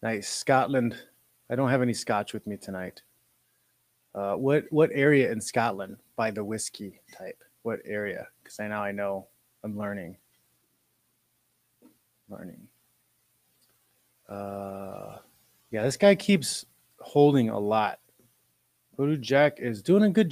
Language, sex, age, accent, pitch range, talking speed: English, male, 30-49, American, 100-130 Hz, 130 wpm